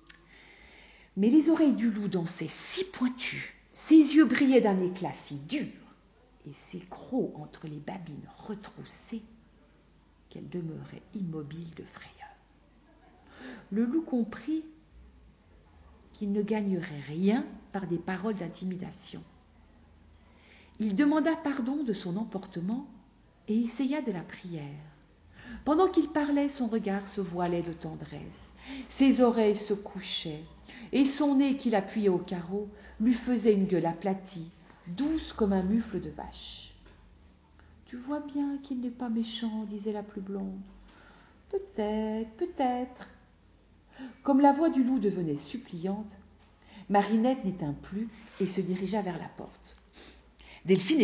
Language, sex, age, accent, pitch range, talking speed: French, female, 50-69, French, 175-250 Hz, 130 wpm